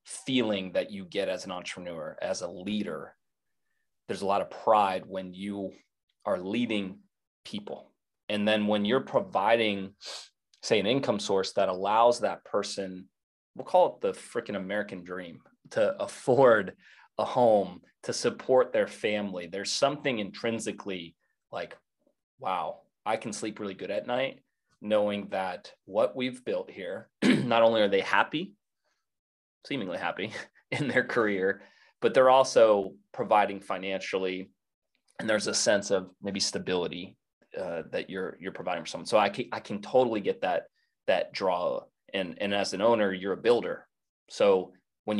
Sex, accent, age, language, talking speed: male, American, 30-49, English, 155 wpm